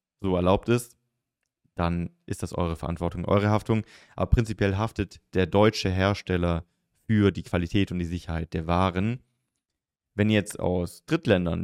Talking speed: 150 wpm